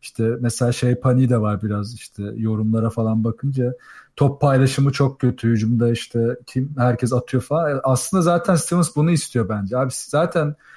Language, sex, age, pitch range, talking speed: Turkish, male, 40-59, 130-160 Hz, 160 wpm